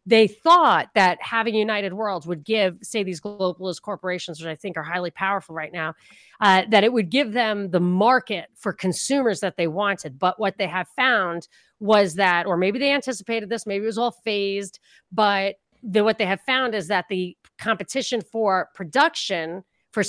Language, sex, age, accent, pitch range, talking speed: English, female, 40-59, American, 180-225 Hz, 185 wpm